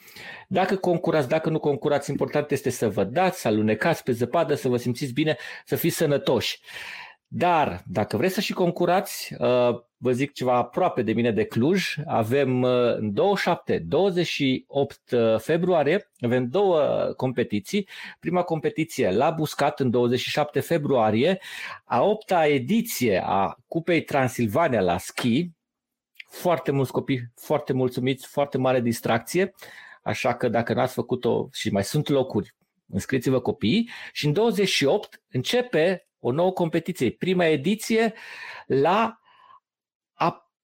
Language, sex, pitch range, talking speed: Romanian, male, 130-180 Hz, 130 wpm